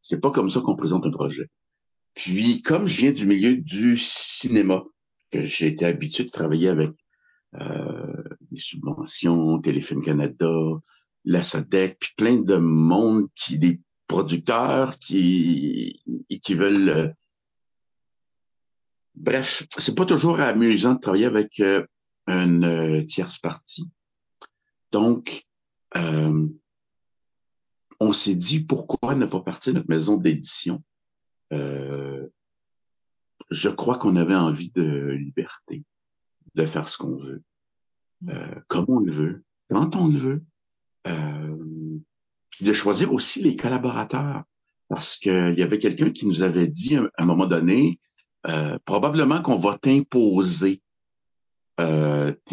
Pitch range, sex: 80-125 Hz, male